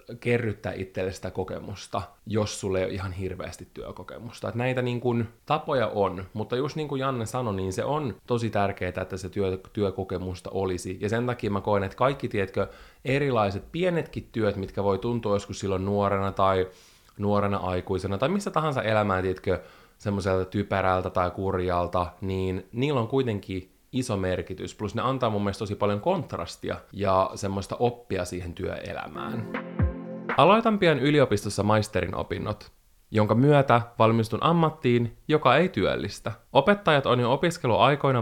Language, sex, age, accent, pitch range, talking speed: Finnish, male, 20-39, native, 95-125 Hz, 150 wpm